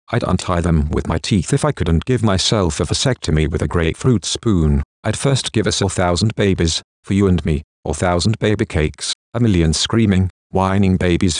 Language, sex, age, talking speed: English, male, 50-69, 195 wpm